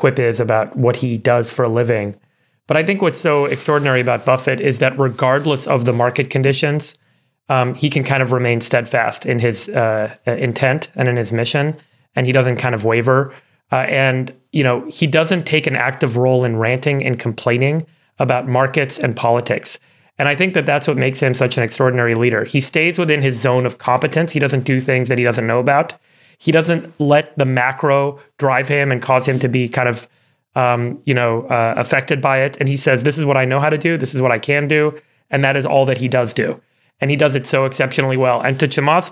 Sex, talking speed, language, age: male, 225 wpm, English, 30-49